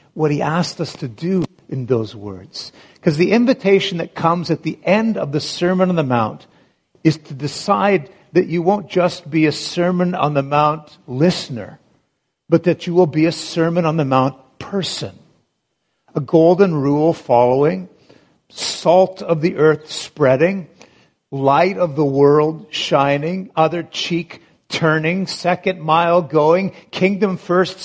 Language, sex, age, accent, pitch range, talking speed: English, male, 50-69, American, 140-185 Hz, 150 wpm